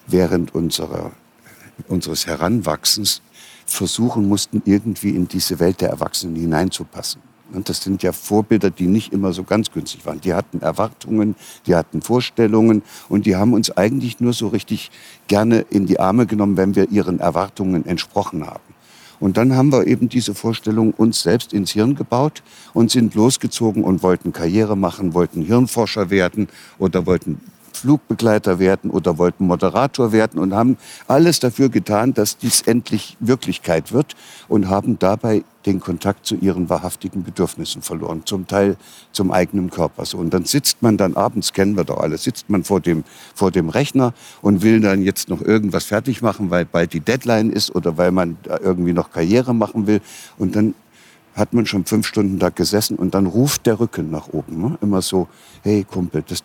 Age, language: 60-79, German